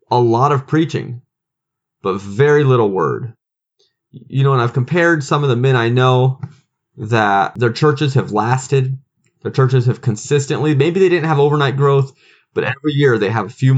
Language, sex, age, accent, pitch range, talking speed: English, male, 20-39, American, 115-140 Hz, 180 wpm